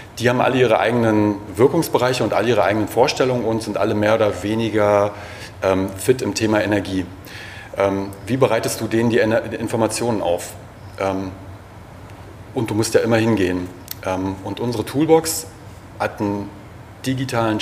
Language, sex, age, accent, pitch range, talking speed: German, male, 30-49, German, 100-120 Hz, 135 wpm